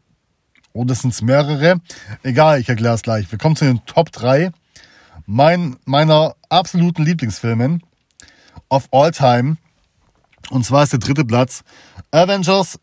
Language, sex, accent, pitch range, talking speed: German, male, German, 120-150 Hz, 140 wpm